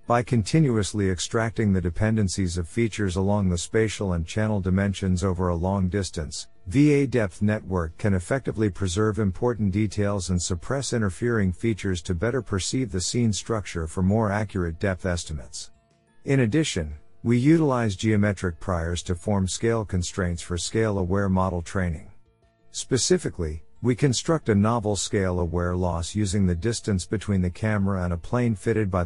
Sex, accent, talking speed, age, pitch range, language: male, American, 150 wpm, 50-69, 90-115 Hz, English